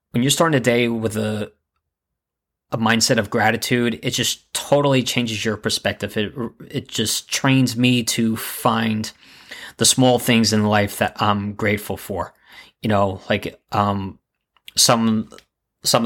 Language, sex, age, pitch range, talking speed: English, male, 20-39, 105-115 Hz, 145 wpm